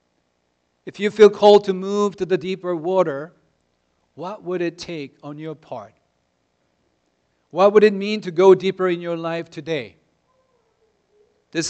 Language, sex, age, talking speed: English, male, 50-69, 150 wpm